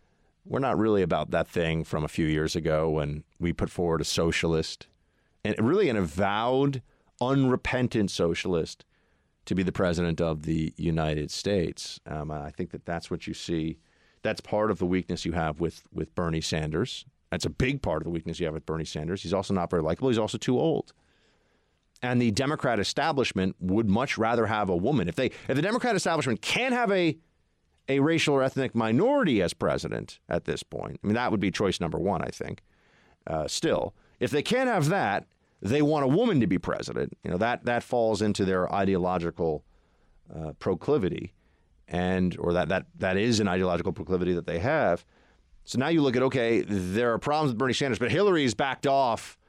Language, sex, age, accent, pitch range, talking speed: English, male, 40-59, American, 85-125 Hz, 195 wpm